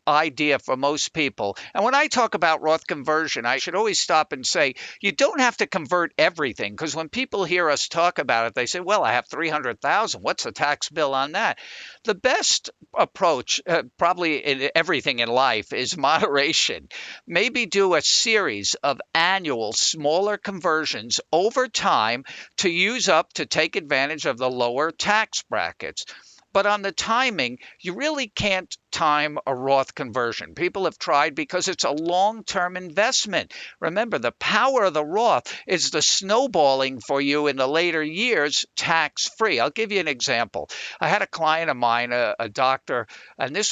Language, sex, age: English, male, 50-69